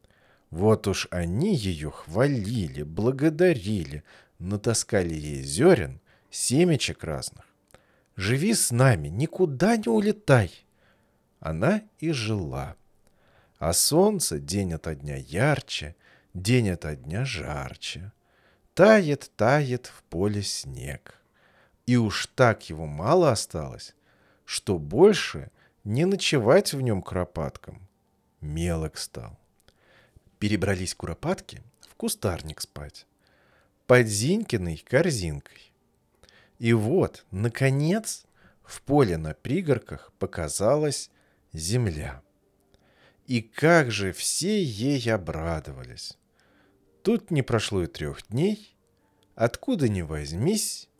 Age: 40-59